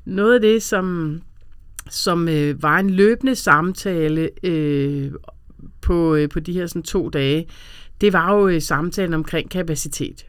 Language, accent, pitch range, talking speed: Danish, native, 155-195 Hz, 110 wpm